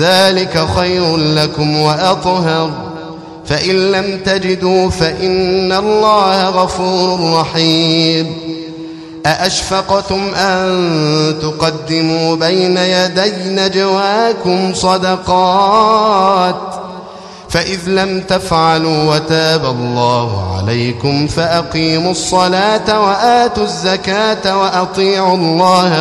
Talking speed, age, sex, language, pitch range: 70 wpm, 30-49, male, Arabic, 160-195 Hz